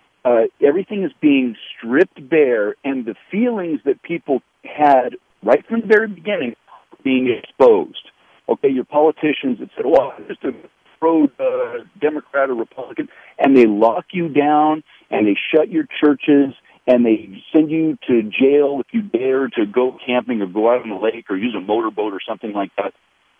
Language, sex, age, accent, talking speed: English, male, 50-69, American, 180 wpm